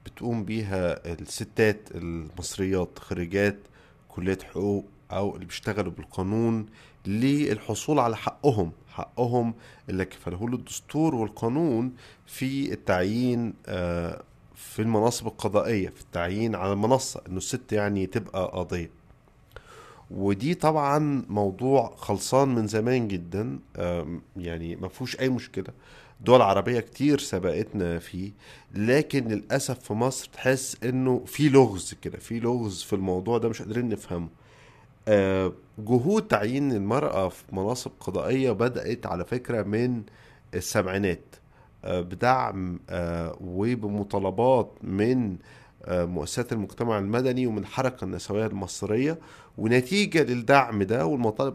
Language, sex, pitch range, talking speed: Arabic, male, 100-130 Hz, 105 wpm